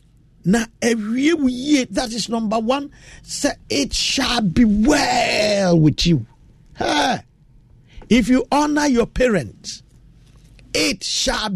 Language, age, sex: English, 50-69, male